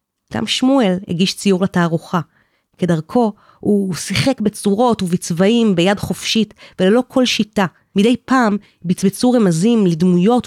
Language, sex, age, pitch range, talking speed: Hebrew, female, 30-49, 170-230 Hz, 115 wpm